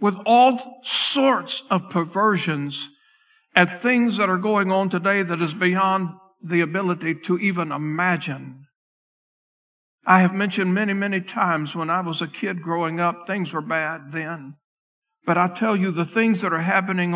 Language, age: English, 60-79